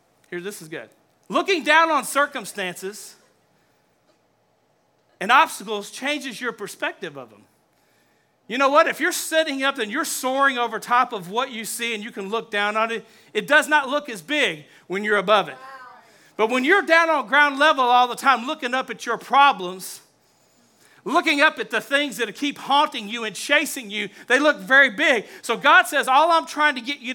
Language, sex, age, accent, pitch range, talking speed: English, male, 40-59, American, 225-305 Hz, 195 wpm